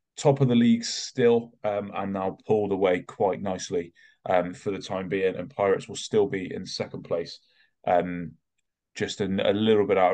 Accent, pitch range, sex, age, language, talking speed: British, 95-115 Hz, male, 20-39, English, 190 wpm